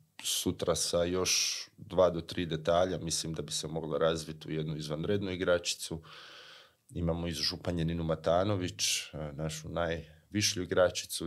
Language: Croatian